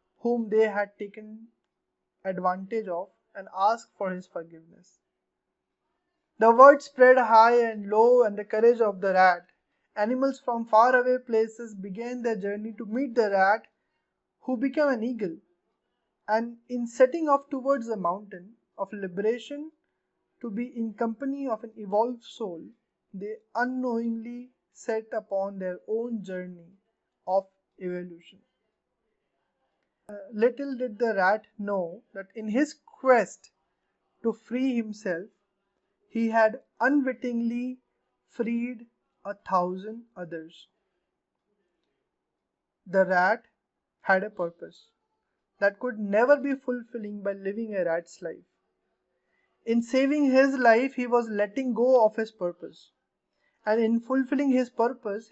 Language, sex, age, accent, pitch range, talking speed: English, male, 20-39, Indian, 195-245 Hz, 125 wpm